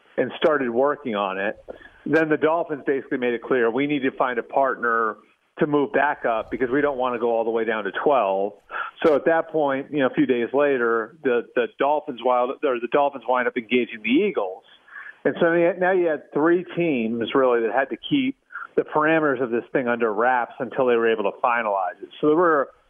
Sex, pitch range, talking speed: male, 115-145 Hz, 225 wpm